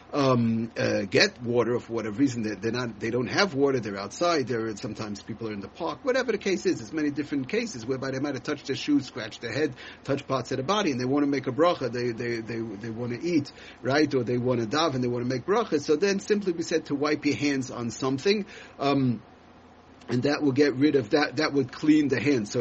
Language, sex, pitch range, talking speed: English, male, 130-170 Hz, 265 wpm